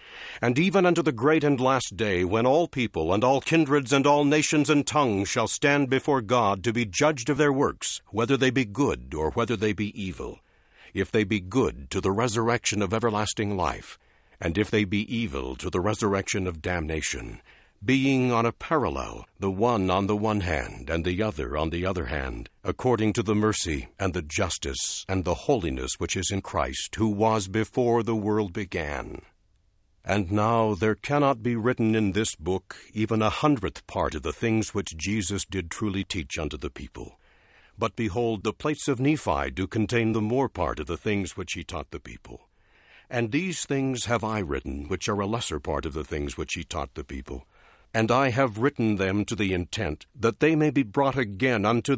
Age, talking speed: 60-79, 200 wpm